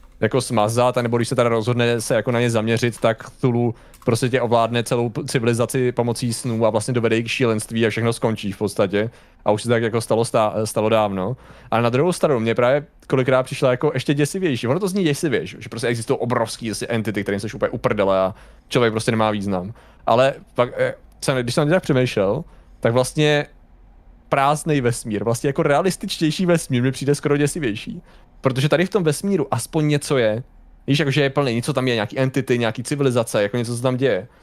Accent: native